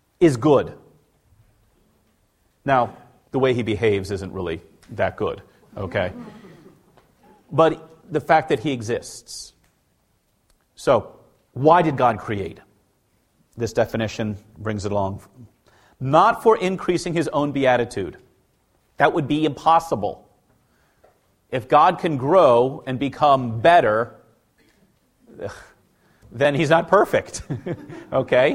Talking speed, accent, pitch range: 105 wpm, American, 115-175 Hz